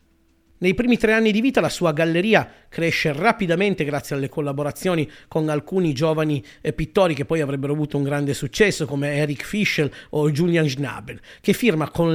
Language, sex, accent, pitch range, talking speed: Italian, male, native, 145-190 Hz, 170 wpm